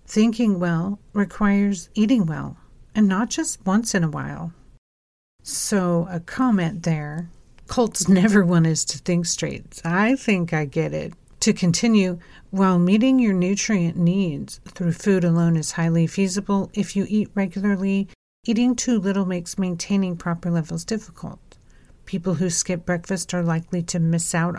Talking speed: 150 wpm